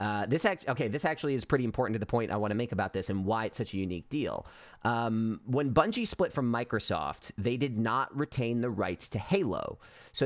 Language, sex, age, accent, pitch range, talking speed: English, male, 30-49, American, 100-130 Hz, 235 wpm